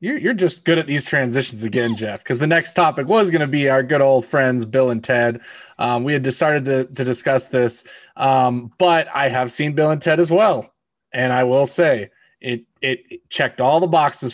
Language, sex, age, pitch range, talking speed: English, male, 20-39, 125-155 Hz, 220 wpm